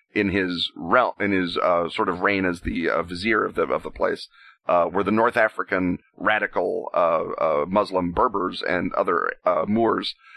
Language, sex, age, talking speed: English, male, 30-49, 185 wpm